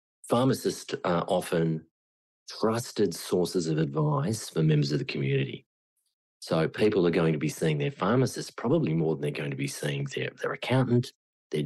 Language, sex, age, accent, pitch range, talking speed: English, male, 40-59, Australian, 80-95 Hz, 170 wpm